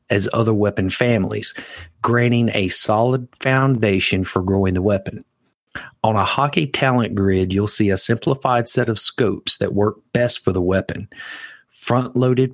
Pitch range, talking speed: 95-125 Hz, 150 wpm